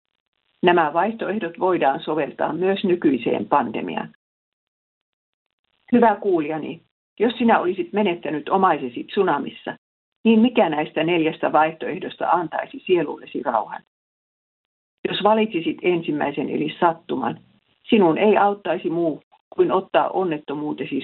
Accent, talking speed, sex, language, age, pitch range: native, 100 wpm, female, Finnish, 50-69, 160-235 Hz